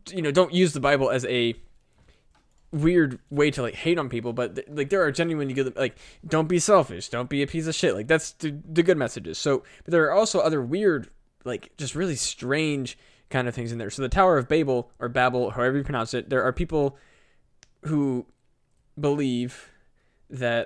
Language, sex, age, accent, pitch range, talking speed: English, male, 20-39, American, 120-145 Hz, 205 wpm